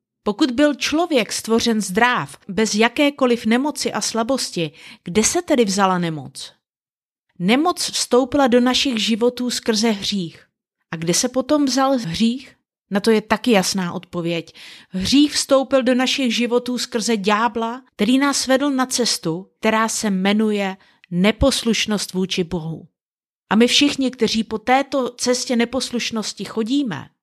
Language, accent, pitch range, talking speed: Czech, native, 195-255 Hz, 135 wpm